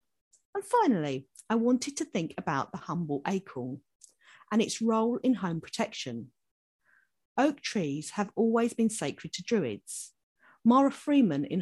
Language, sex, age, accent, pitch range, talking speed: English, female, 50-69, British, 150-230 Hz, 140 wpm